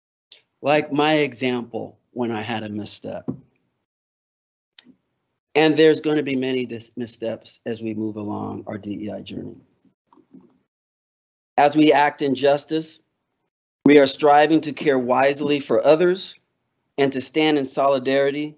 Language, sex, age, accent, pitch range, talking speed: English, male, 40-59, American, 120-155 Hz, 130 wpm